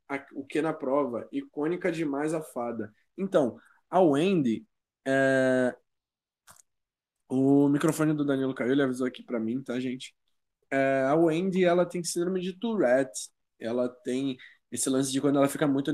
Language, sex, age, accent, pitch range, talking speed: Portuguese, male, 20-39, Brazilian, 130-160 Hz, 145 wpm